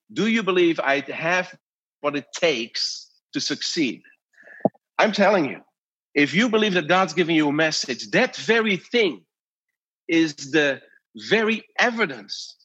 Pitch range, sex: 170-230 Hz, male